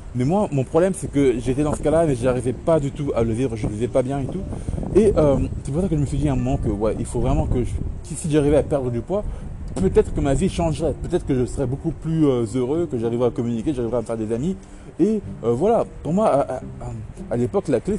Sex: male